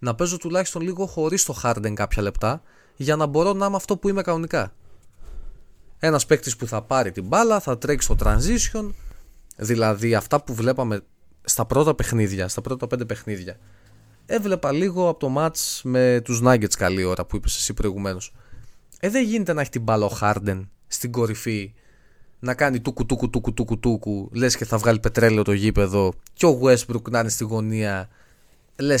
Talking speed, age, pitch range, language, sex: 175 wpm, 20-39, 105-145 Hz, Greek, male